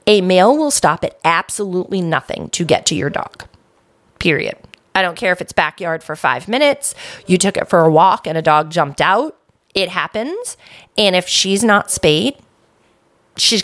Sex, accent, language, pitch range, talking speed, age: female, American, English, 175-255 Hz, 180 wpm, 30-49